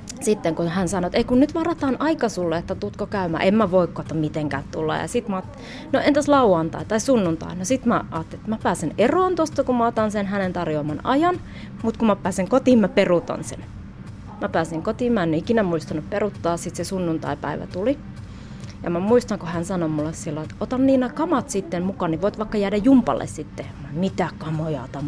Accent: native